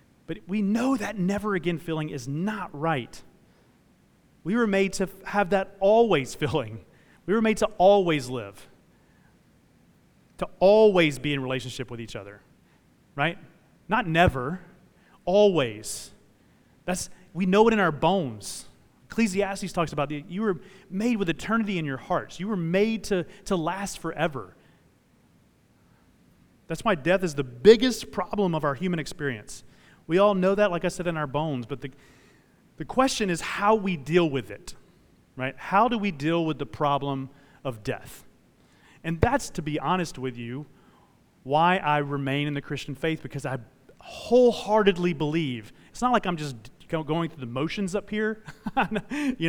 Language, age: English, 30-49